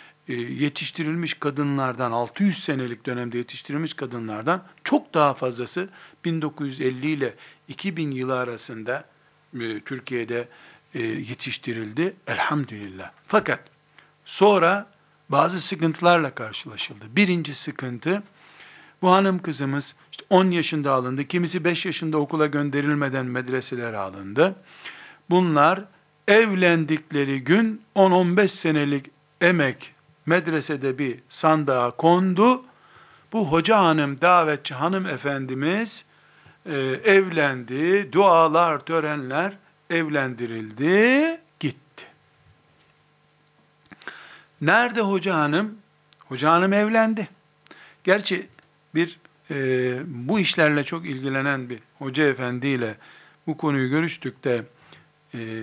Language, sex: Turkish, male